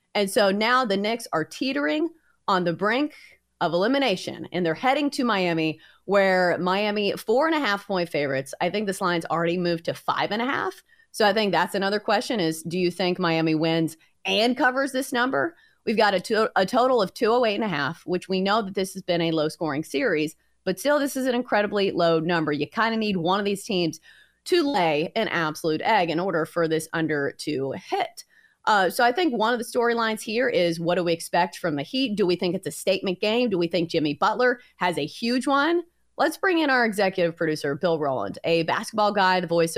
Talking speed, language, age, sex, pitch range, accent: 225 wpm, English, 30-49, female, 170-240 Hz, American